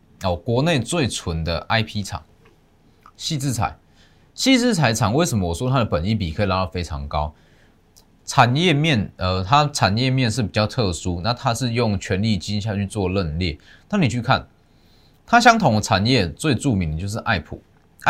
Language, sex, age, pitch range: Chinese, male, 20-39, 85-125 Hz